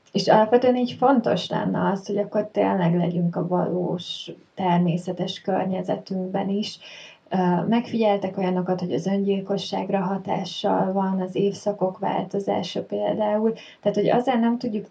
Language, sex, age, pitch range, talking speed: Hungarian, female, 30-49, 180-210 Hz, 125 wpm